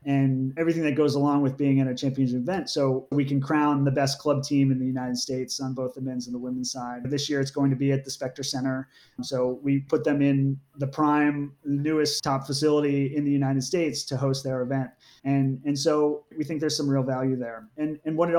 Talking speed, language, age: 240 wpm, English, 30-49